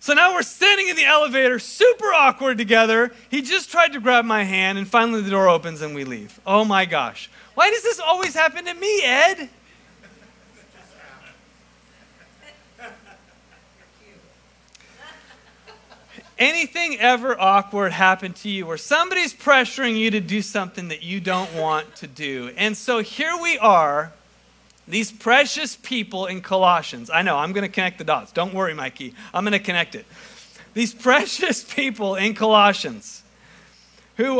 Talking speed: 150 wpm